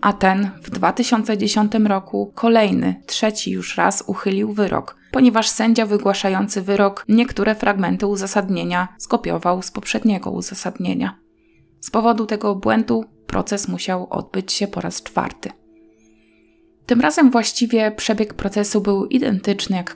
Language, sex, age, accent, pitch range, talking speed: Polish, female, 20-39, native, 175-210 Hz, 125 wpm